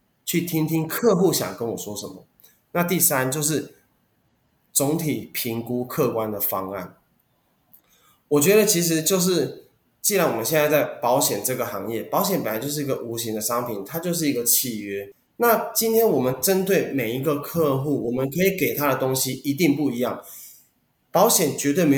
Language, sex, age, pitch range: Chinese, male, 20-39, 130-190 Hz